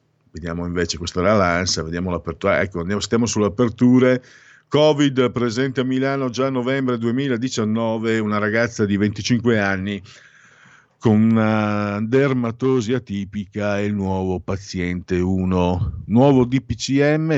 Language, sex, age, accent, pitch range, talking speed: Italian, male, 50-69, native, 90-125 Hz, 115 wpm